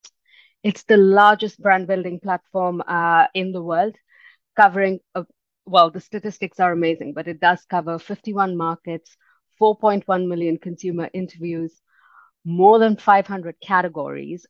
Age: 30-49